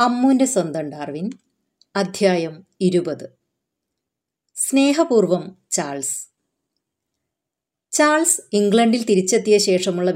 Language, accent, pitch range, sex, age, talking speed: Malayalam, native, 165-220 Hz, female, 30-49, 65 wpm